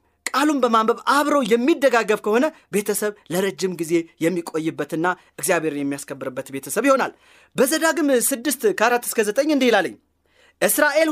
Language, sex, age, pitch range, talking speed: Amharic, male, 30-49, 190-285 Hz, 105 wpm